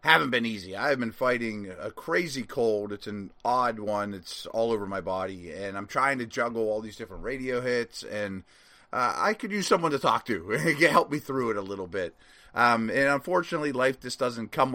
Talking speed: 210 wpm